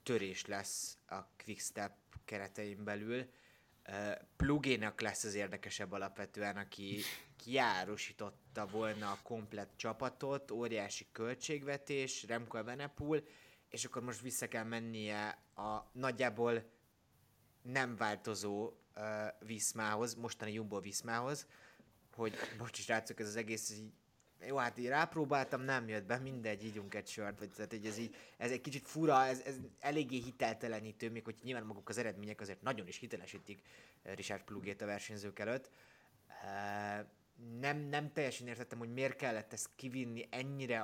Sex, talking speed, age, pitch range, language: male, 125 wpm, 20-39, 105-130 Hz, Hungarian